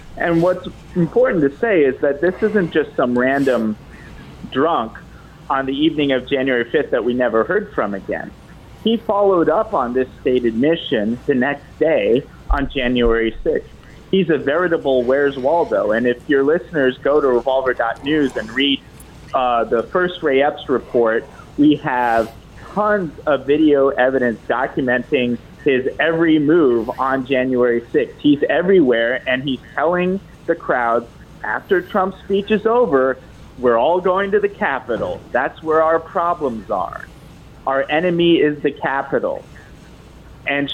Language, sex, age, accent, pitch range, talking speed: English, male, 30-49, American, 130-190 Hz, 145 wpm